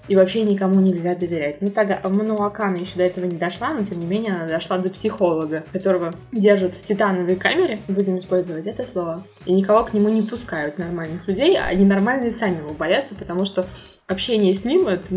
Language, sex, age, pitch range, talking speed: Russian, female, 20-39, 185-225 Hz, 200 wpm